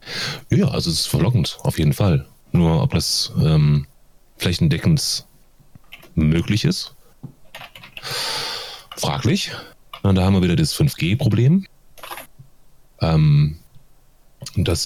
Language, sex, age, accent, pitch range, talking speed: German, male, 30-49, German, 90-140 Hz, 100 wpm